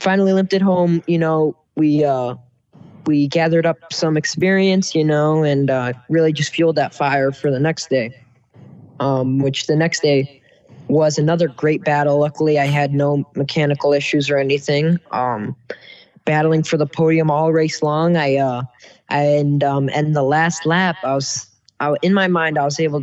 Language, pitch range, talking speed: English, 135-160 Hz, 175 wpm